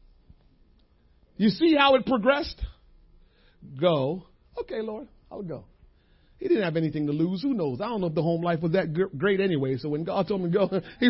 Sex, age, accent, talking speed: male, 40-59, American, 200 wpm